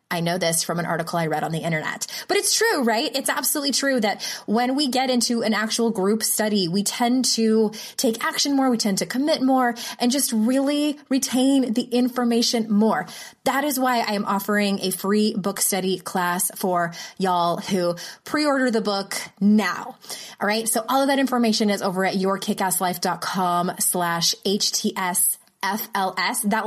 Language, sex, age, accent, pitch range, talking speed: English, female, 20-39, American, 185-240 Hz, 175 wpm